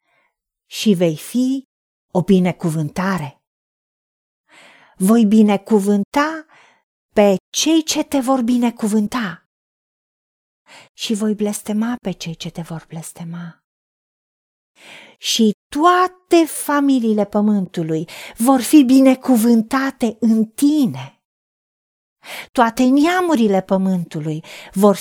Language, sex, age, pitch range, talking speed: Romanian, female, 40-59, 185-250 Hz, 85 wpm